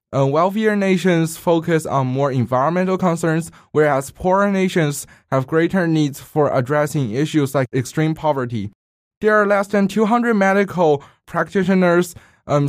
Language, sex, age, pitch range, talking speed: English, male, 20-39, 135-175 Hz, 130 wpm